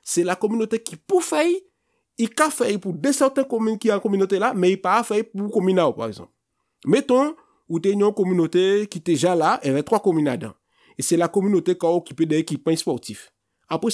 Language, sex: French, male